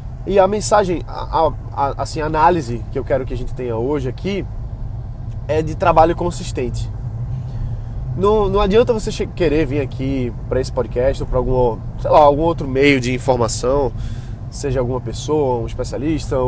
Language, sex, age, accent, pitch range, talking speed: Portuguese, male, 20-39, Brazilian, 120-170 Hz, 170 wpm